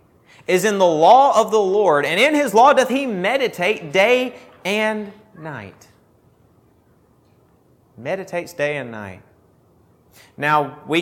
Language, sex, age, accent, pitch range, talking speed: English, male, 30-49, American, 125-200 Hz, 125 wpm